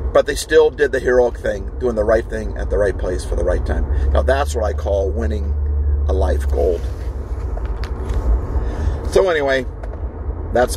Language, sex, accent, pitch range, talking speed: English, male, American, 75-105 Hz, 175 wpm